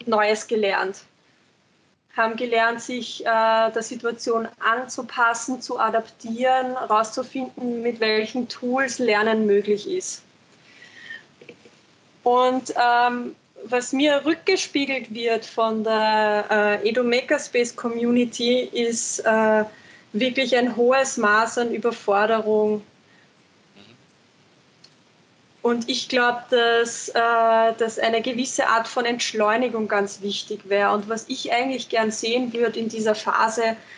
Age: 20-39